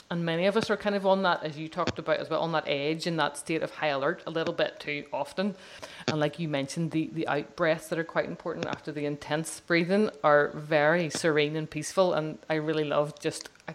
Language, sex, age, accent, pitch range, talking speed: English, female, 30-49, Irish, 155-190 Hz, 240 wpm